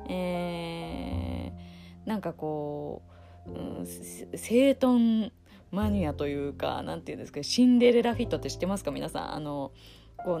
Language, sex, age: Japanese, female, 20-39